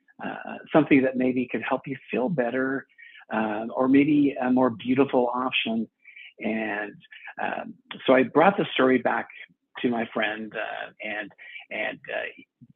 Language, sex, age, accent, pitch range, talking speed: English, male, 50-69, American, 120-140 Hz, 145 wpm